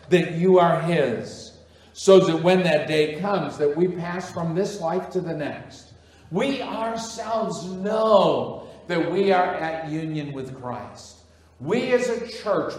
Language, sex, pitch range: English, male, 145-200 Hz